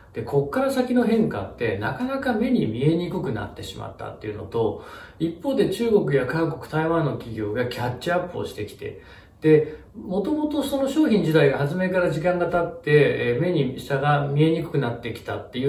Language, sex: Japanese, male